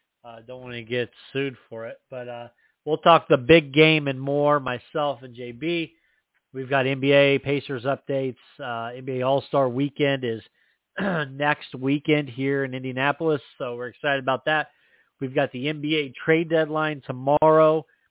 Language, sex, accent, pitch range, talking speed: English, male, American, 125-145 Hz, 160 wpm